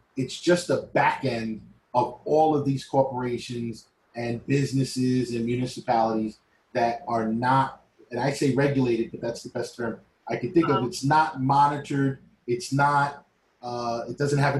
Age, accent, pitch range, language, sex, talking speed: 30-49, American, 115-135 Hz, English, male, 160 wpm